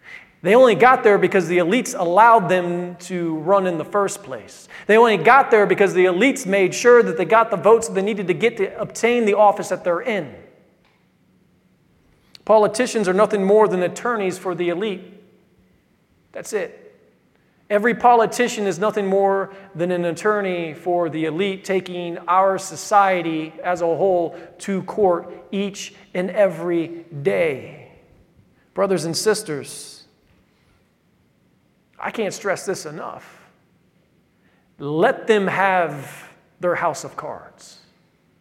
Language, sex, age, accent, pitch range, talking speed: English, male, 40-59, American, 175-205 Hz, 140 wpm